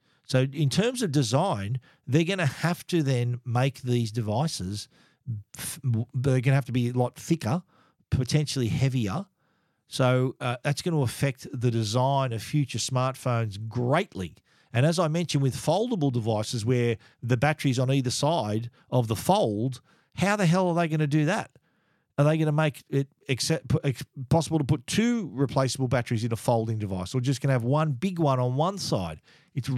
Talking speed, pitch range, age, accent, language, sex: 180 wpm, 125-155 Hz, 50-69, Australian, English, male